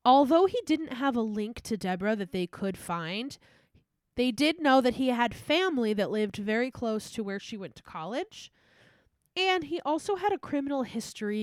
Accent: American